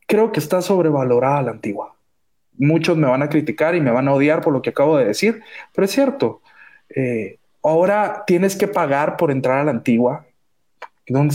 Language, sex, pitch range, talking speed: Spanish, male, 130-175 Hz, 190 wpm